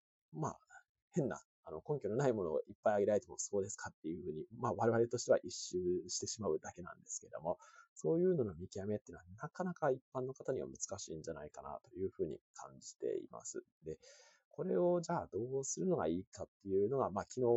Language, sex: Japanese, male